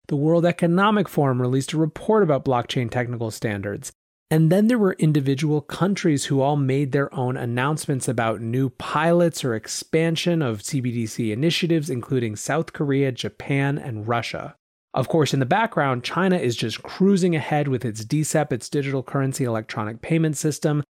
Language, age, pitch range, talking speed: English, 30-49, 120-155 Hz, 160 wpm